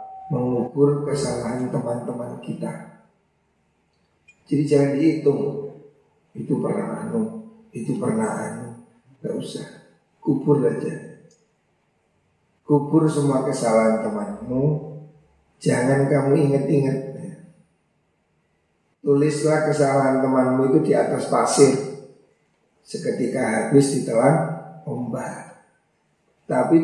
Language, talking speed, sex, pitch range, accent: Indonesian, 80 wpm, male, 135-160 Hz, native